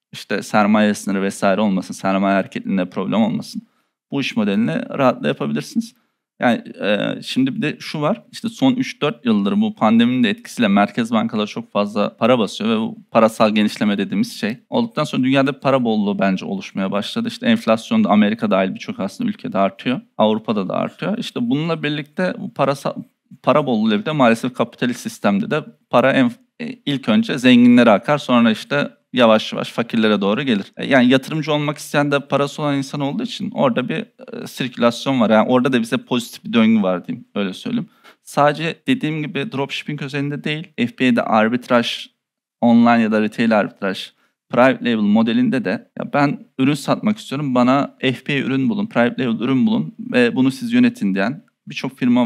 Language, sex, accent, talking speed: Turkish, male, native, 170 wpm